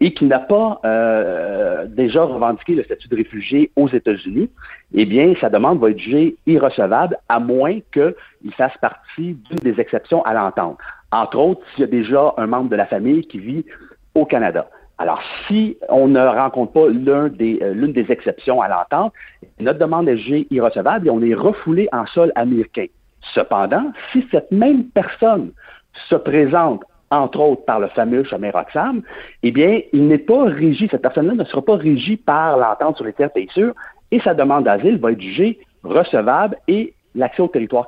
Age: 50-69